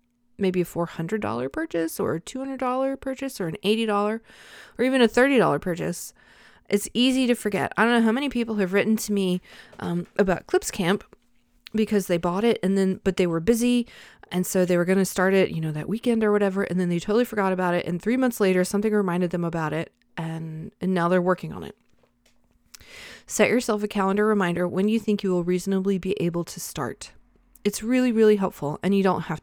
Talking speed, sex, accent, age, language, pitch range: 210 wpm, female, American, 20-39, English, 180-230 Hz